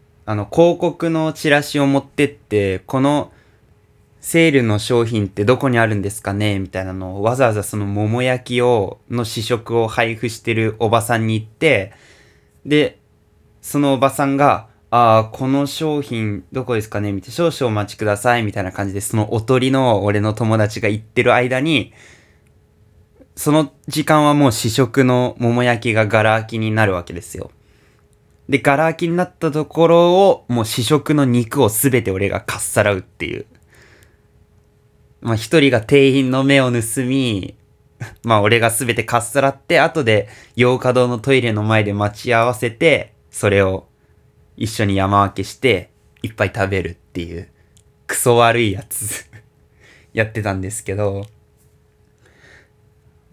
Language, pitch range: Japanese, 105-135 Hz